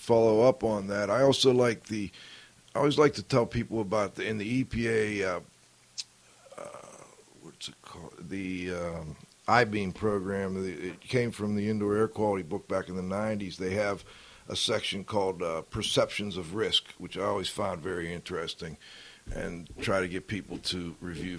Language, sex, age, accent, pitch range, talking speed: English, male, 50-69, American, 95-120 Hz, 175 wpm